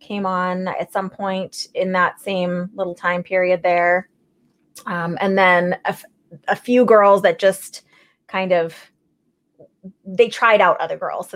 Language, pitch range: English, 175-215 Hz